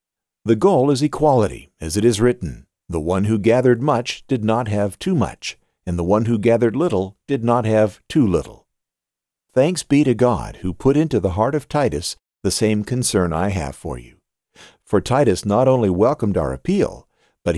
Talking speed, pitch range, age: 190 wpm, 90-120 Hz, 50-69